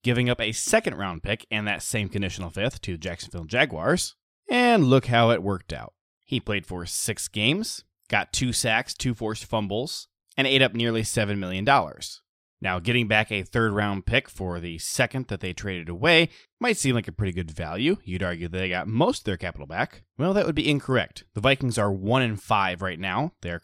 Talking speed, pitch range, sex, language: 210 wpm, 100-130 Hz, male, English